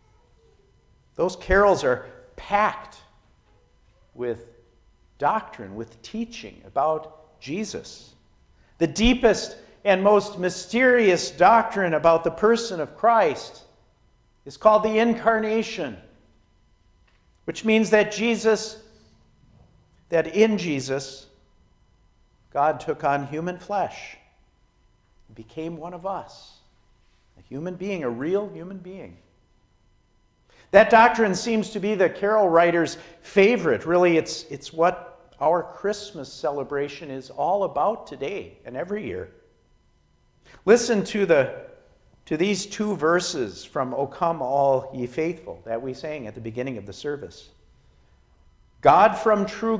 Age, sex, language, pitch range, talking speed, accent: 50-69, male, English, 125-205 Hz, 115 wpm, American